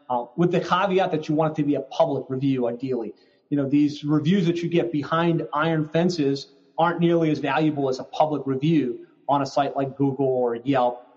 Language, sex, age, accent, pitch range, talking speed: English, male, 30-49, American, 140-165 Hz, 210 wpm